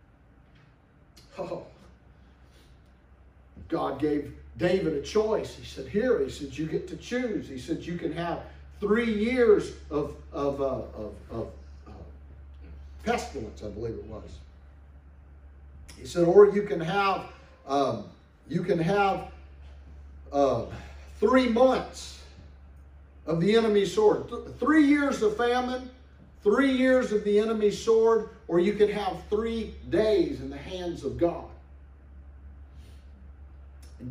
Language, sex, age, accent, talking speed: English, male, 50-69, American, 125 wpm